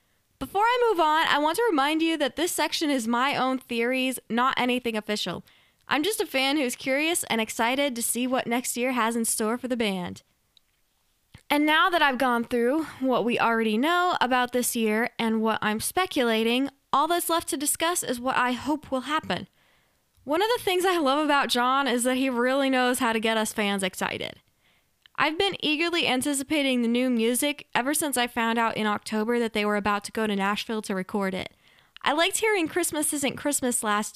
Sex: female